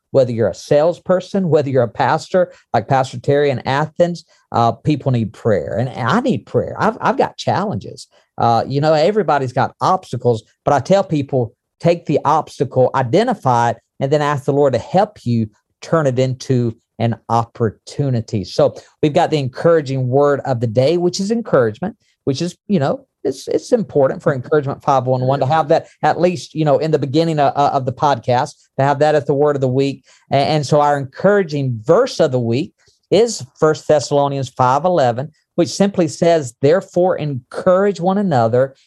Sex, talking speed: male, 185 wpm